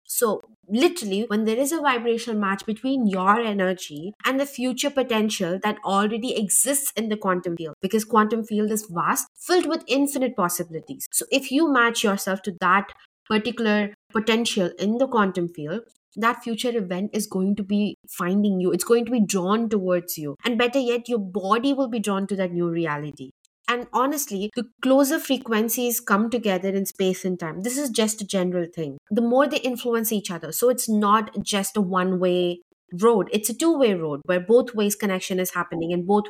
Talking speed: 190 wpm